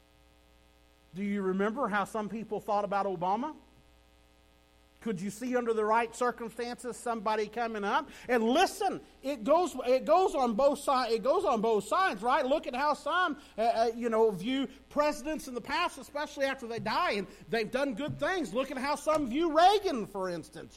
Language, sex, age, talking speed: English, male, 50-69, 185 wpm